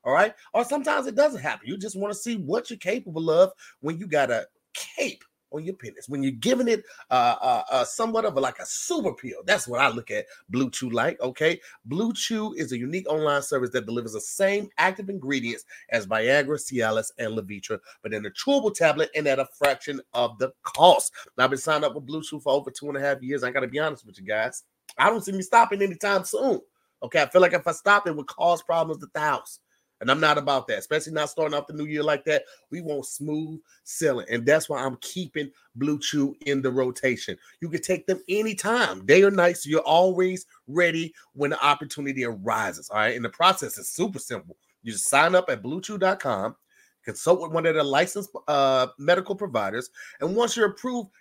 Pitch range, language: 140-200 Hz, English